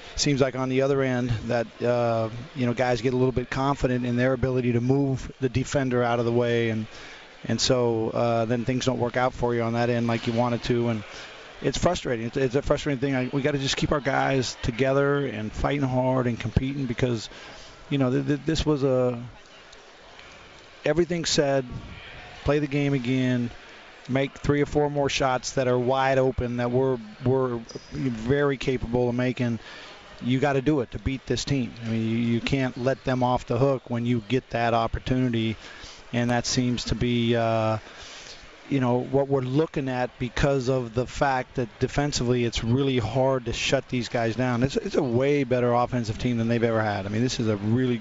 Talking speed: 200 wpm